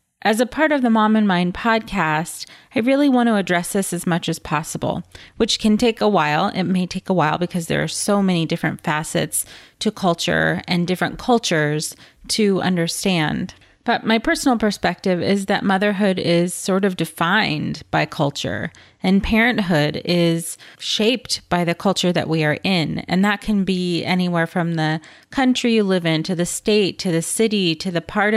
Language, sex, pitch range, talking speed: English, female, 165-210 Hz, 185 wpm